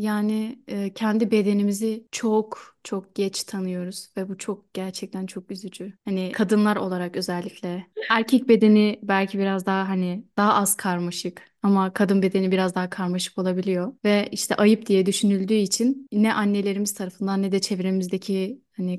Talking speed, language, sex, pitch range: 150 wpm, Turkish, female, 195-230 Hz